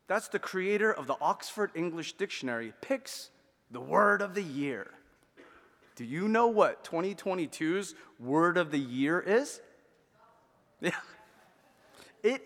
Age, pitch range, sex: 30-49, 155-250 Hz, male